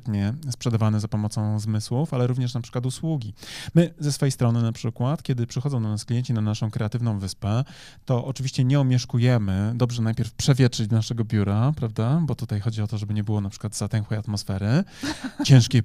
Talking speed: 180 wpm